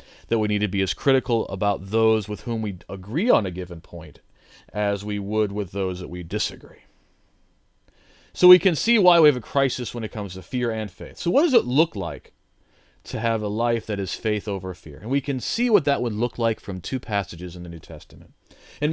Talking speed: 230 wpm